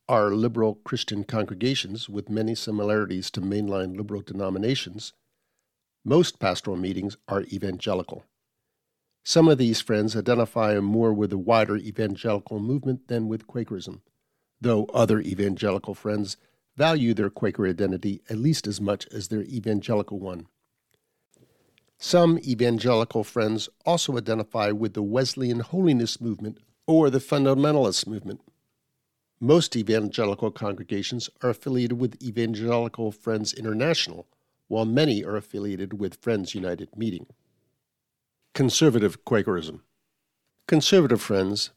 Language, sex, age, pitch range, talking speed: English, male, 50-69, 105-125 Hz, 115 wpm